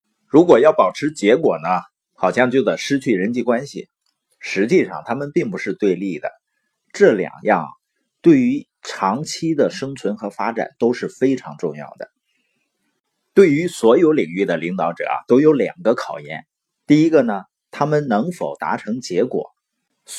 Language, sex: Chinese, male